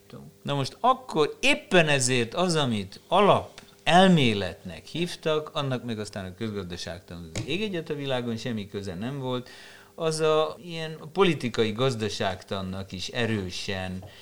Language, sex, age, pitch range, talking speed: Hungarian, male, 50-69, 95-140 Hz, 125 wpm